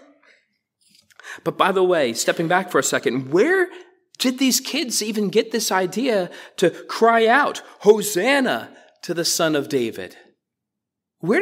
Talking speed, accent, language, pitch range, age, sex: 140 wpm, American, English, 145-210 Hz, 30-49, male